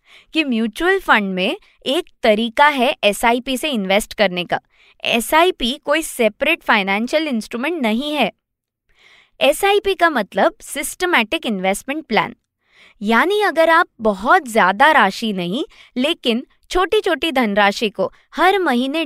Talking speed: 125 wpm